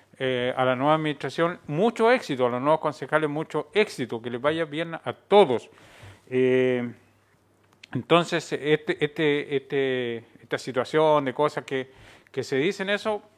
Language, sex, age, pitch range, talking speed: Spanish, male, 40-59, 120-160 Hz, 150 wpm